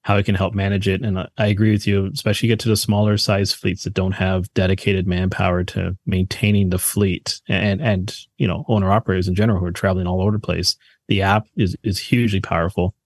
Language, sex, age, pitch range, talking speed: English, male, 30-49, 95-110 Hz, 220 wpm